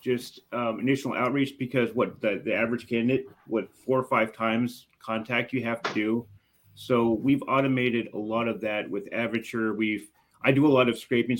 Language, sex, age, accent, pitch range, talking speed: English, male, 30-49, American, 105-120 Hz, 190 wpm